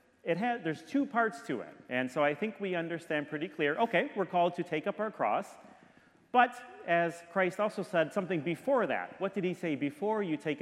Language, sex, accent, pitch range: English, male, American, 135-185 Hz